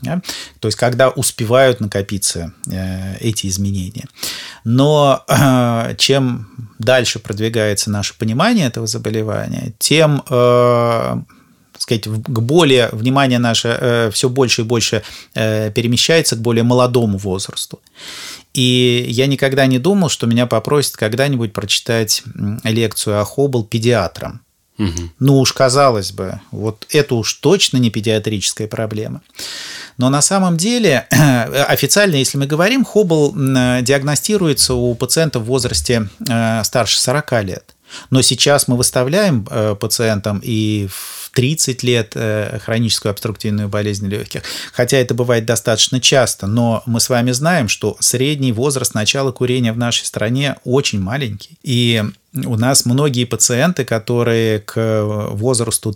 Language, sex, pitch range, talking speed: Russian, male, 110-135 Hz, 130 wpm